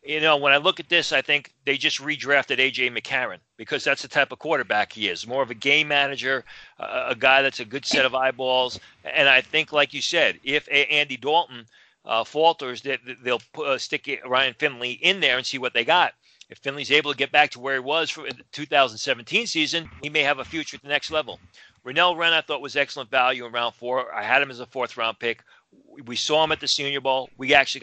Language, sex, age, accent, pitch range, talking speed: English, male, 40-59, American, 125-150 Hz, 235 wpm